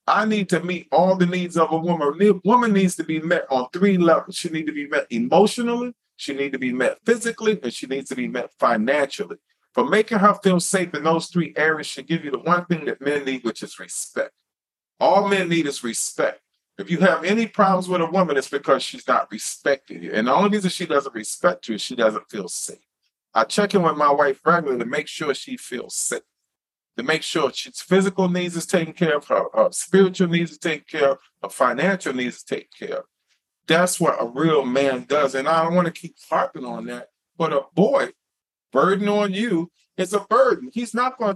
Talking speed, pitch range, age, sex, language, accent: 225 wpm, 160-205 Hz, 40-59, male, English, American